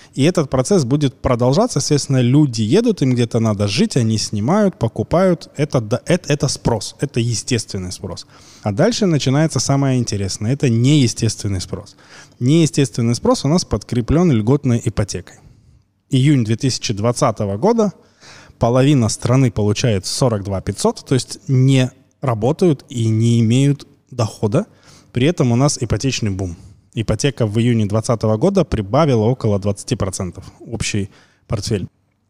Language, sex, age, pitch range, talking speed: Russian, male, 20-39, 110-140 Hz, 130 wpm